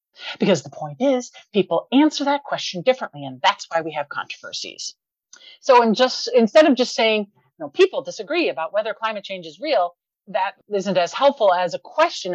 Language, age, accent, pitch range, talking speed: English, 40-59, American, 175-260 Hz, 190 wpm